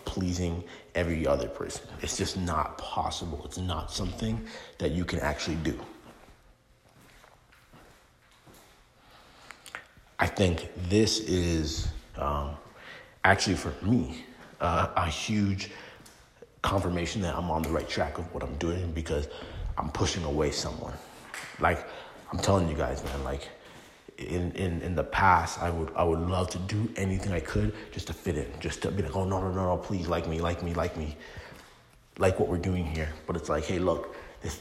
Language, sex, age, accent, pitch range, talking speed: English, male, 30-49, American, 80-100 Hz, 165 wpm